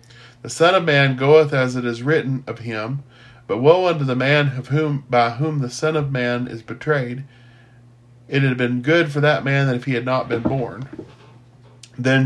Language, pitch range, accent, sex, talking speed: English, 120-140 Hz, American, male, 200 wpm